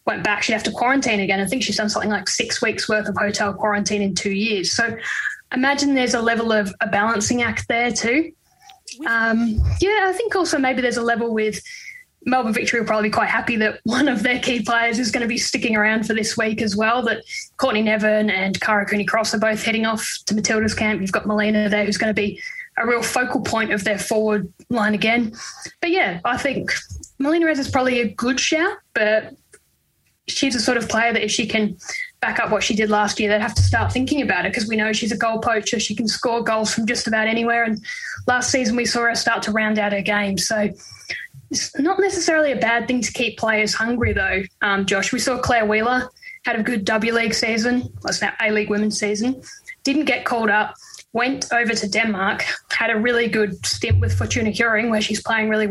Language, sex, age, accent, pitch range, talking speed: English, female, 10-29, Australian, 215-250 Hz, 230 wpm